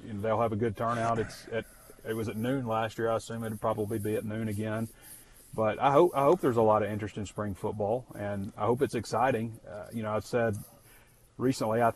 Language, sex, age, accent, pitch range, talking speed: English, male, 30-49, American, 110-120 Hz, 230 wpm